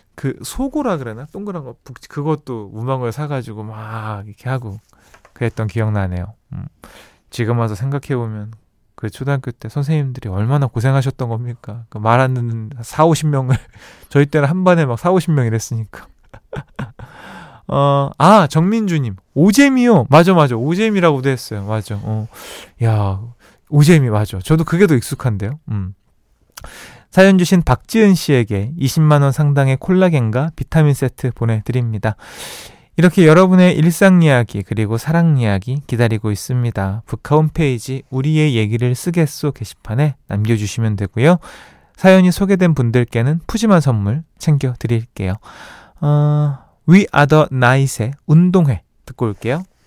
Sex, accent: male, native